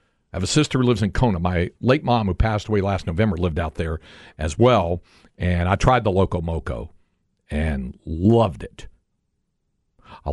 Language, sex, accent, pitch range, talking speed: English, male, American, 80-110 Hz, 180 wpm